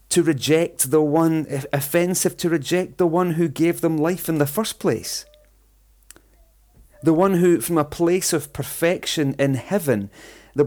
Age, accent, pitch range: 40-59, British, 115-165 Hz